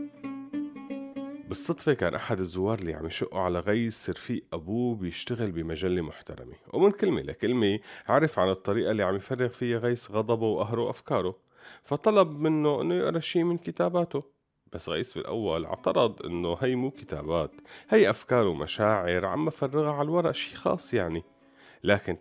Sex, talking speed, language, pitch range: male, 145 wpm, Arabic, 90-140 Hz